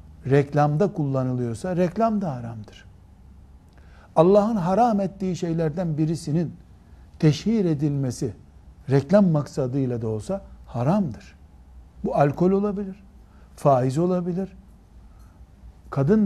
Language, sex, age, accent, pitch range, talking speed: Turkish, male, 60-79, native, 105-160 Hz, 85 wpm